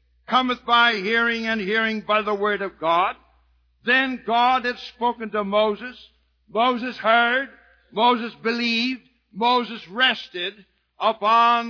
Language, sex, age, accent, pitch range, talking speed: English, male, 60-79, American, 210-245 Hz, 120 wpm